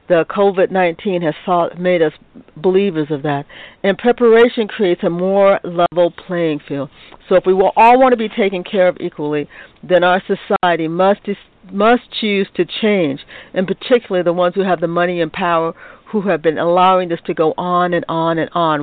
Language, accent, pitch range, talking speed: English, American, 165-200 Hz, 185 wpm